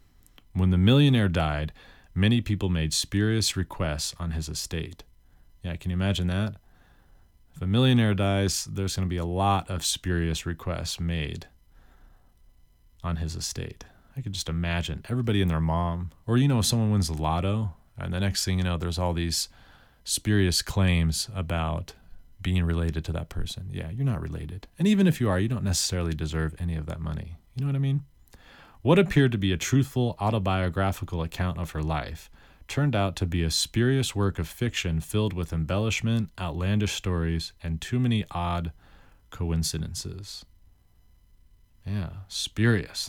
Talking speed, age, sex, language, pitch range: 165 wpm, 30-49, male, English, 85-105 Hz